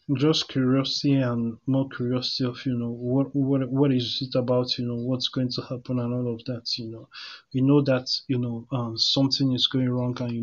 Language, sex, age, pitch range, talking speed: English, male, 20-39, 125-135 Hz, 220 wpm